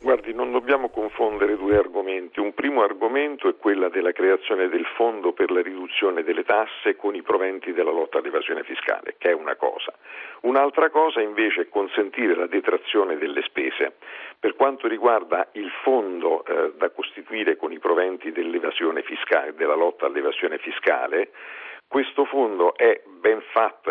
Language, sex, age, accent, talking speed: Italian, male, 50-69, native, 155 wpm